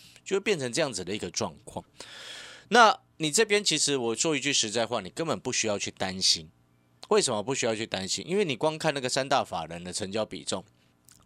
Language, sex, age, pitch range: Chinese, male, 30-49, 95-150 Hz